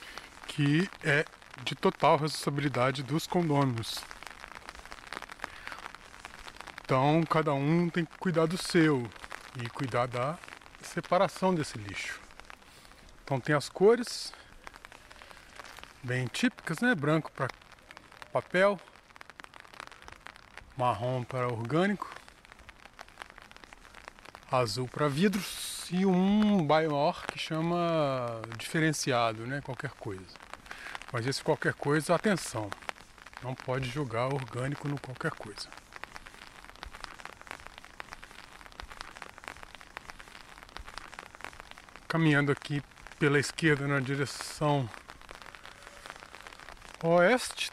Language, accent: Portuguese, Brazilian